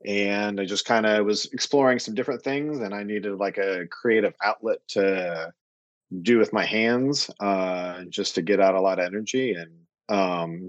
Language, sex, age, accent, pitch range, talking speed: English, male, 30-49, American, 95-110 Hz, 185 wpm